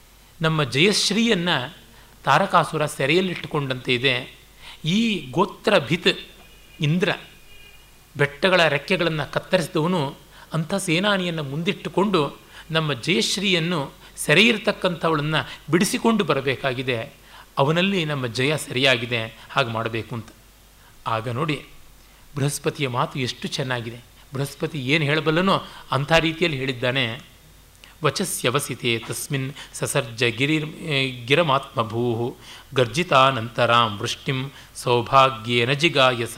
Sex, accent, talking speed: male, native, 80 wpm